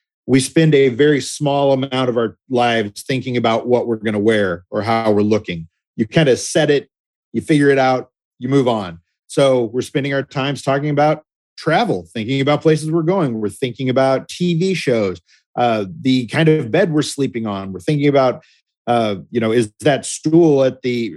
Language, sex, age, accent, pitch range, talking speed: English, male, 40-59, American, 110-140 Hz, 195 wpm